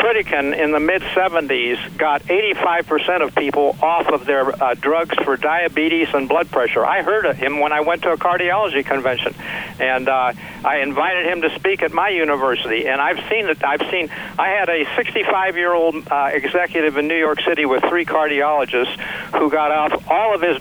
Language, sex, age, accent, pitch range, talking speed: English, male, 60-79, American, 145-175 Hz, 185 wpm